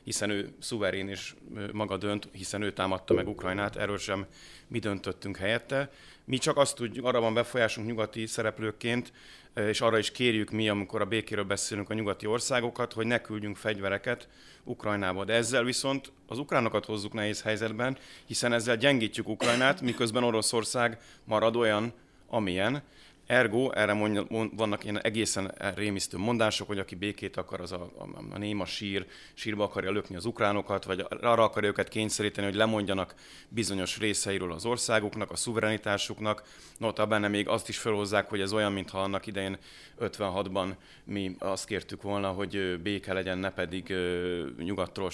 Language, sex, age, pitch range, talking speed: Hungarian, male, 30-49, 100-115 Hz, 160 wpm